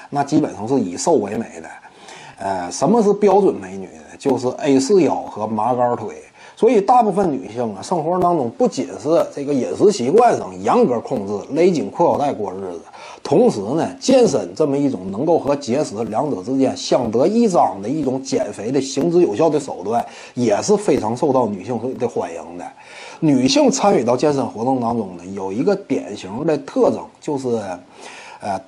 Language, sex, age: Chinese, male, 30-49